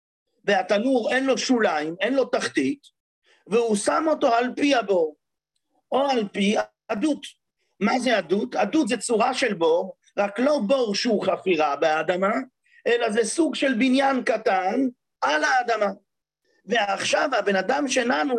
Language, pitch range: English, 205-275 Hz